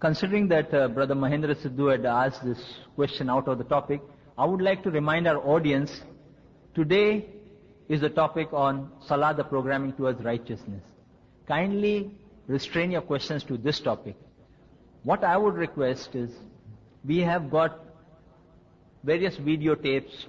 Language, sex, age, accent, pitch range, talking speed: English, male, 50-69, Indian, 130-150 Hz, 140 wpm